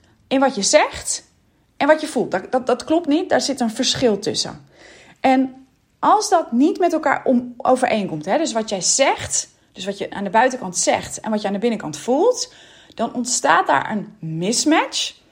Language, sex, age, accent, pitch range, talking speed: Dutch, female, 30-49, Dutch, 215-305 Hz, 195 wpm